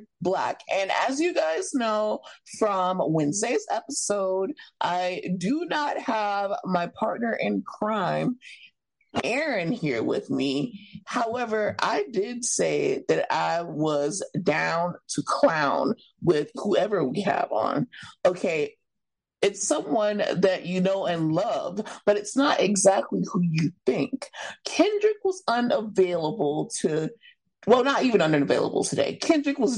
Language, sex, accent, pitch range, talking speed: English, female, American, 185-285 Hz, 125 wpm